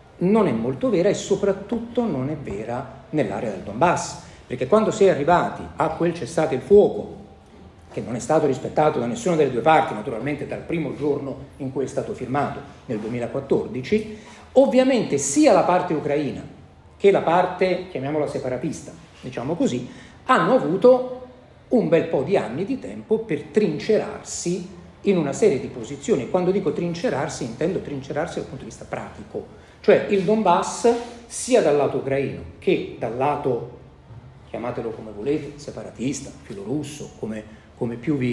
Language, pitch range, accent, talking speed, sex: Italian, 140-215 Hz, native, 155 wpm, male